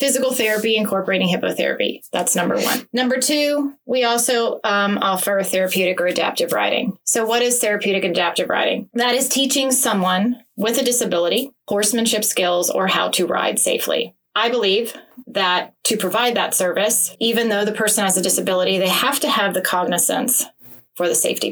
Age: 30-49